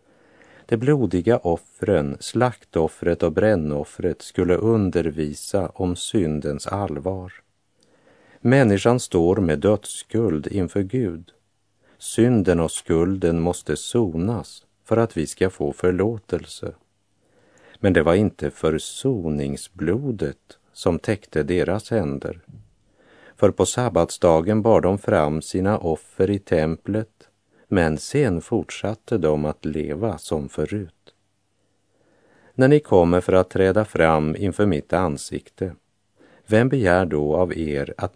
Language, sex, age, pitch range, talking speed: Polish, male, 50-69, 80-110 Hz, 110 wpm